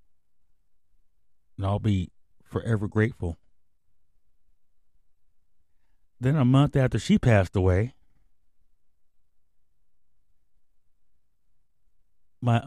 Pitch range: 85-105 Hz